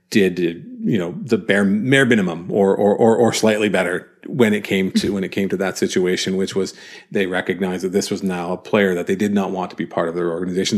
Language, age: English, 40-59